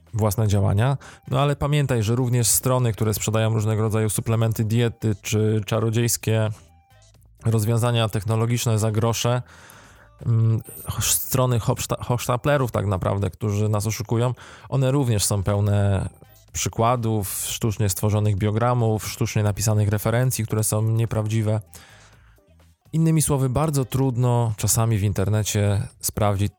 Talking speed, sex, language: 115 wpm, male, Polish